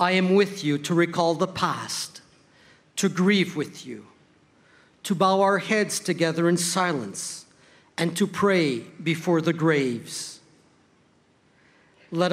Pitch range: 160-195 Hz